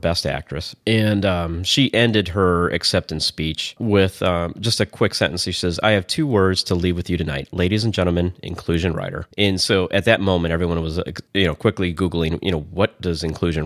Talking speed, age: 205 wpm, 30-49